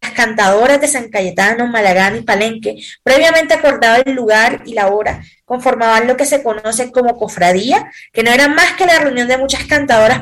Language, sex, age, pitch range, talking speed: Spanish, female, 10-29, 210-255 Hz, 180 wpm